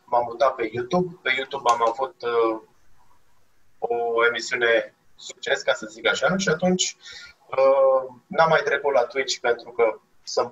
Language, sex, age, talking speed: Romanian, male, 20-39, 155 wpm